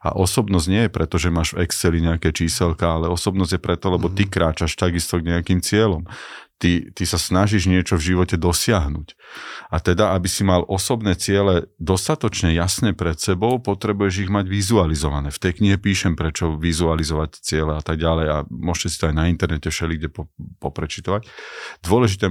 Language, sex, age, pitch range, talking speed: Slovak, male, 40-59, 85-100 Hz, 180 wpm